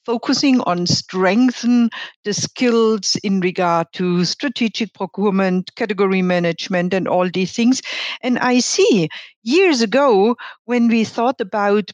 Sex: female